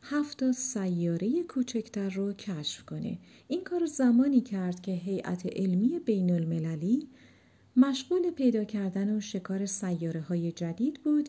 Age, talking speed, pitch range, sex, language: 50-69, 130 wpm, 190-260 Hz, female, Persian